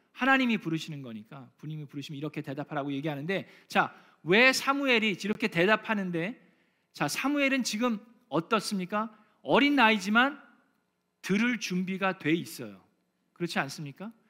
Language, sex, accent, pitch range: Korean, male, native, 155-225 Hz